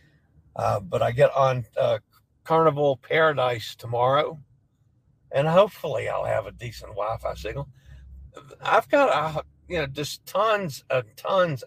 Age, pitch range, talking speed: 60-79, 125-145 Hz, 135 wpm